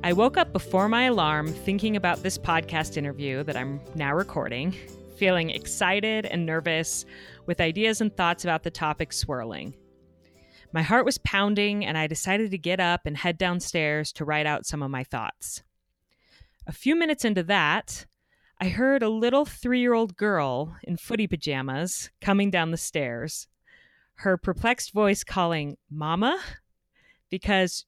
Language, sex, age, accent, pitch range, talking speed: English, female, 30-49, American, 155-210 Hz, 155 wpm